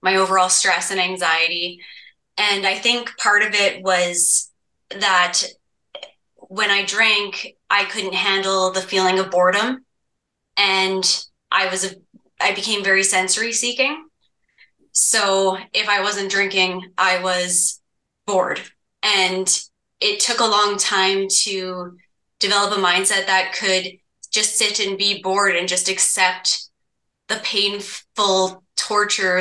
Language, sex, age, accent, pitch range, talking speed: English, female, 20-39, American, 185-200 Hz, 130 wpm